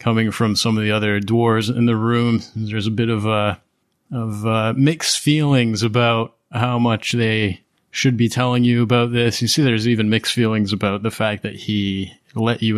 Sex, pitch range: male, 110-135 Hz